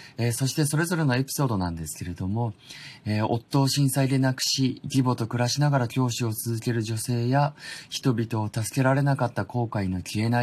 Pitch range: 105-130 Hz